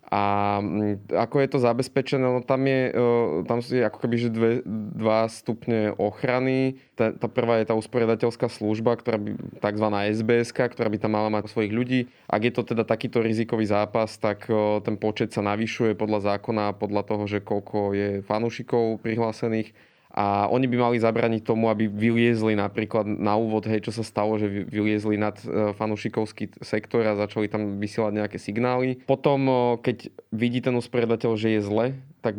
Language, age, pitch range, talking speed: Slovak, 20-39, 105-115 Hz, 165 wpm